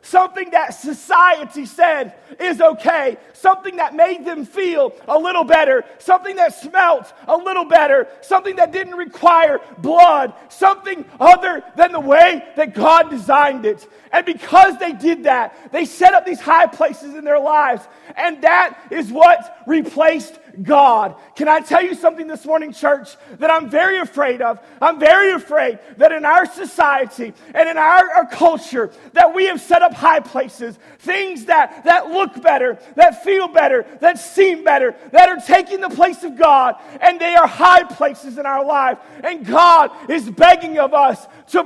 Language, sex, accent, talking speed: English, male, American, 170 wpm